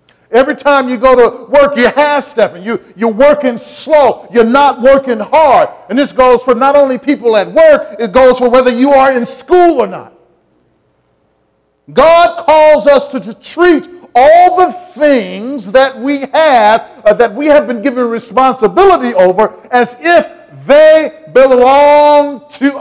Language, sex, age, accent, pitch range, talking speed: English, male, 50-69, American, 180-275 Hz, 155 wpm